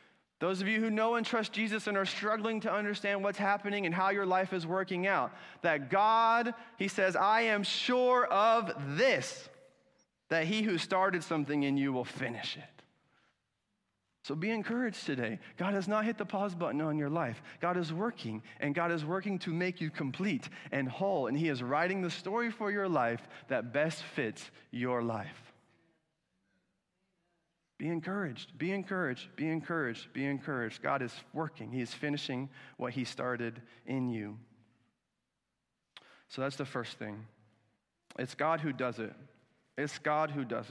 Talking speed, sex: 170 wpm, male